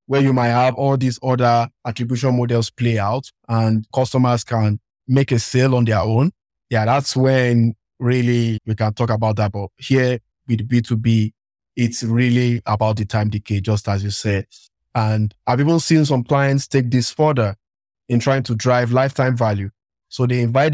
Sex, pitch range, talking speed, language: male, 110-130 Hz, 175 wpm, English